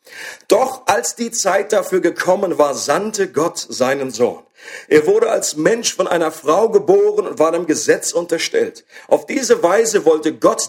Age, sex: 50-69, male